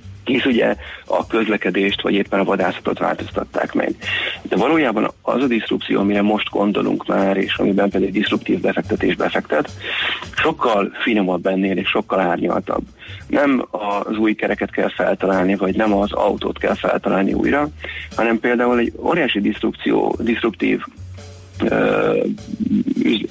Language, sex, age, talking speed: Hungarian, male, 30-49, 130 wpm